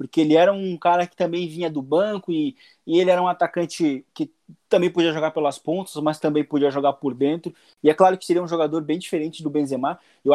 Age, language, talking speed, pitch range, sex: 20-39, Portuguese, 230 wpm, 150-185 Hz, male